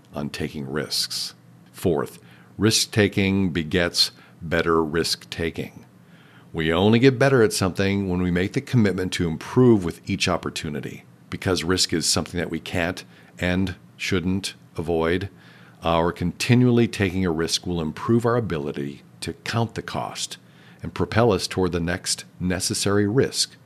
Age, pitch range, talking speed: 50-69, 80-105 Hz, 140 wpm